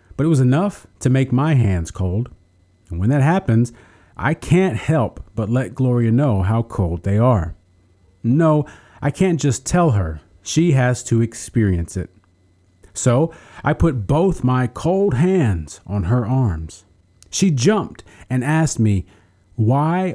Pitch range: 90-130 Hz